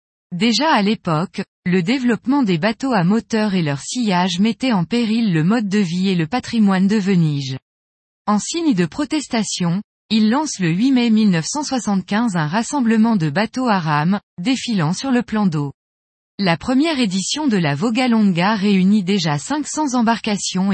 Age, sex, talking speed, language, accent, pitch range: 20-39, female, 160 wpm, French, French, 180-245 Hz